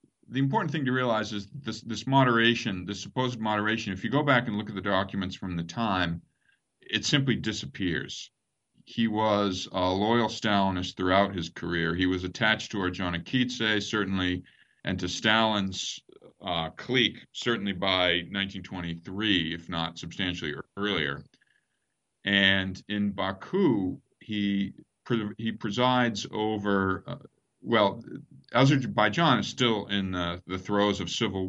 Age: 50-69